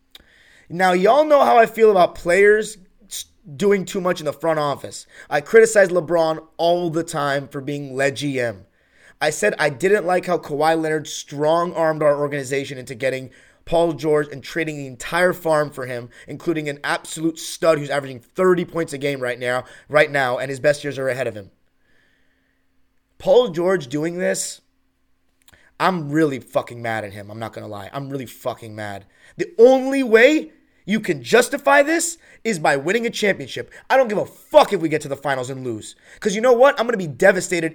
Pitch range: 145-235 Hz